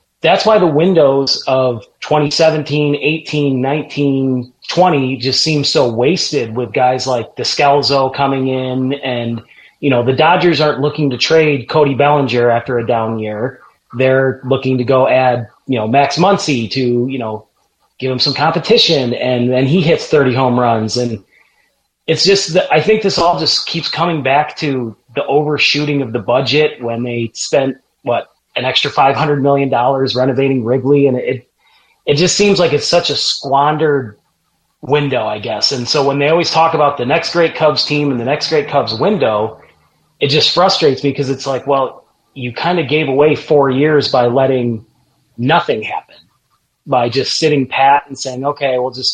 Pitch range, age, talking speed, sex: 125-150 Hz, 30-49, 175 wpm, male